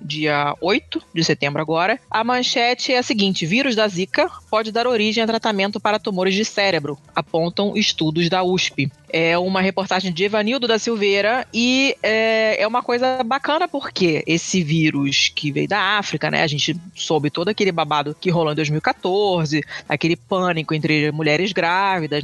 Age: 20-39